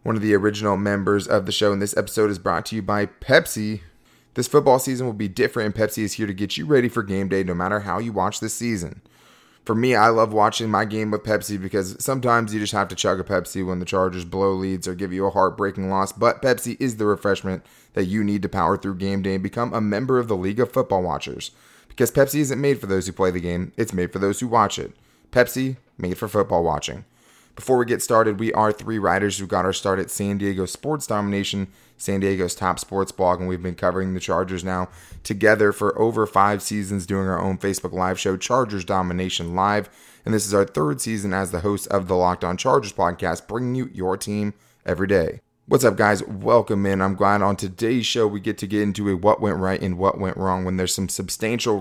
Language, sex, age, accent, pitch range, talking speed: English, male, 20-39, American, 95-110 Hz, 240 wpm